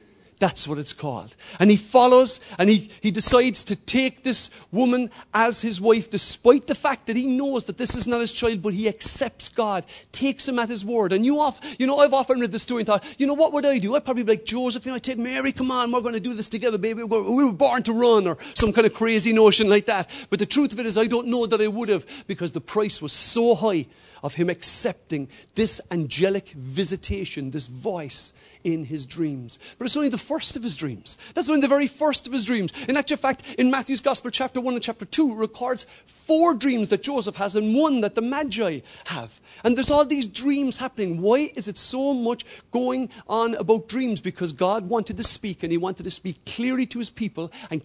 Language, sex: English, male